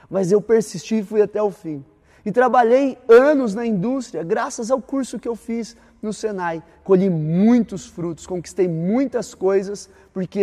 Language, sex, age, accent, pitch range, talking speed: Portuguese, male, 30-49, Brazilian, 185-260 Hz, 160 wpm